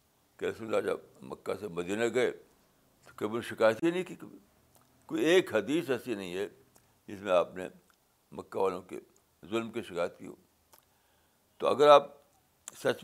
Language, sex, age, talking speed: Urdu, male, 60-79, 155 wpm